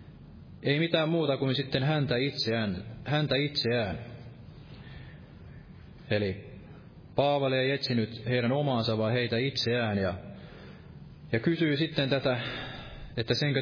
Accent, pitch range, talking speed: native, 110-135 Hz, 110 wpm